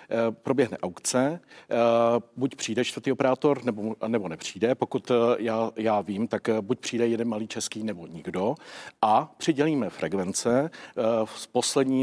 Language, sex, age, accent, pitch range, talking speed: Czech, male, 50-69, native, 110-125 Hz, 130 wpm